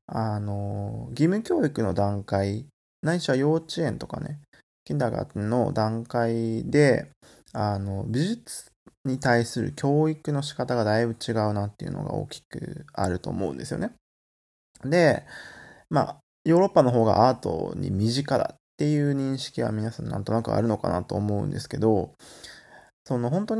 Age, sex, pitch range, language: 20-39, male, 105-145 Hz, Japanese